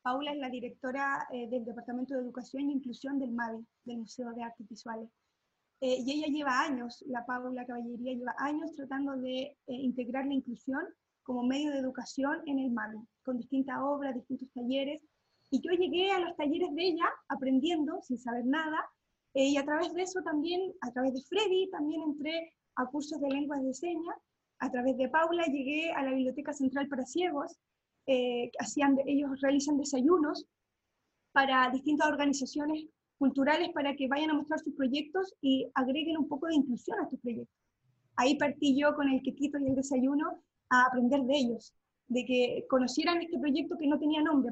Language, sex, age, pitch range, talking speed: Spanish, female, 20-39, 255-300 Hz, 180 wpm